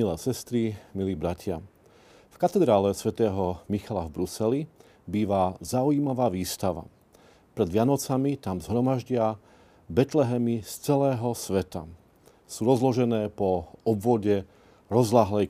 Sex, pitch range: male, 100-125 Hz